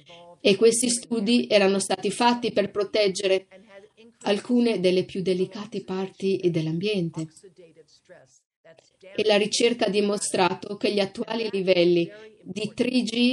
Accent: native